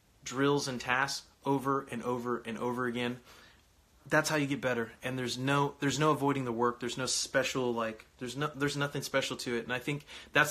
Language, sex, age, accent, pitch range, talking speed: English, male, 20-39, American, 120-140 Hz, 210 wpm